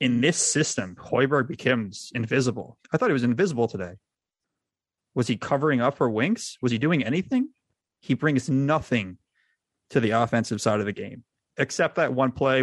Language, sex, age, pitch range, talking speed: English, male, 20-39, 115-145 Hz, 170 wpm